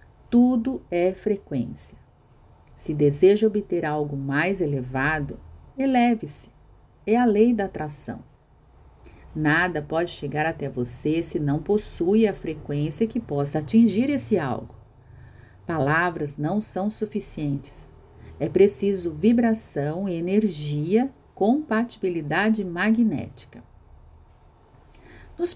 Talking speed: 95 wpm